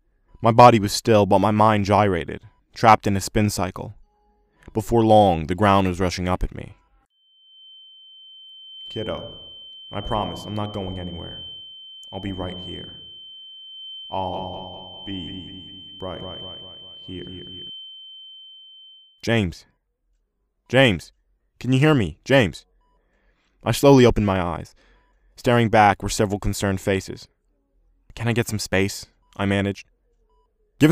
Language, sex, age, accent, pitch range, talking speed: English, male, 20-39, American, 95-130 Hz, 120 wpm